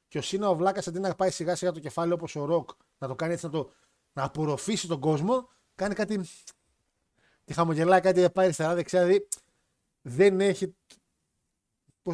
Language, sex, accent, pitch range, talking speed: Greek, male, native, 155-225 Hz, 185 wpm